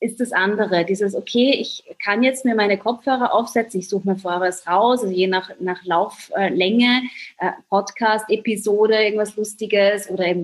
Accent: German